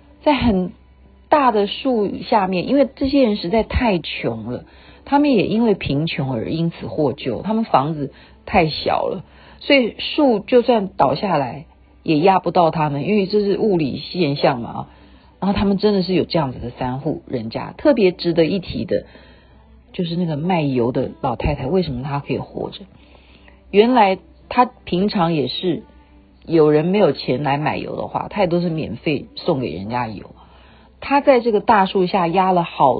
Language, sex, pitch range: Chinese, female, 125-195 Hz